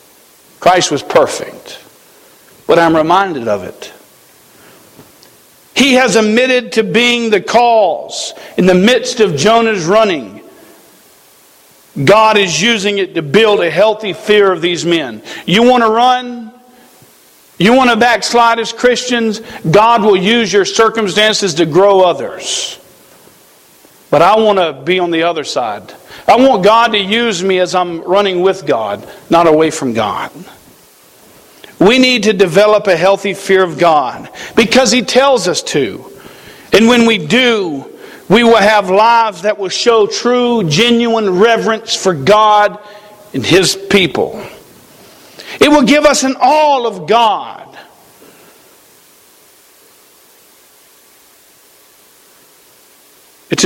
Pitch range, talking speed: 175-235 Hz, 130 wpm